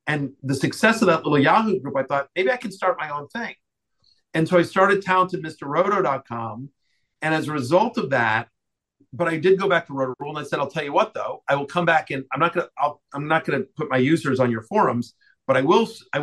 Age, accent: 50-69, American